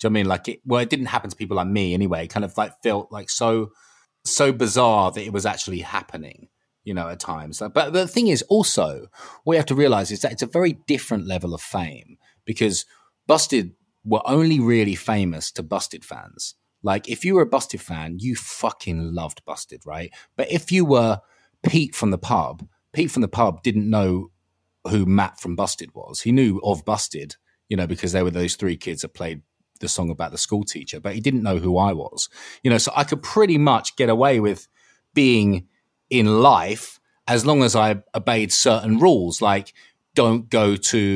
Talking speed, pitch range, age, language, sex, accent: 215 wpm, 95-135 Hz, 30-49, English, male, British